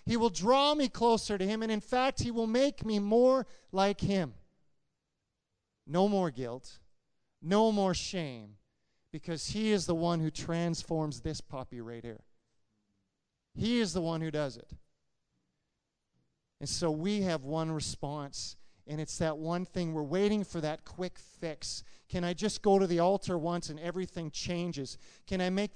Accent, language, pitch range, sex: American, English, 145-190 Hz, male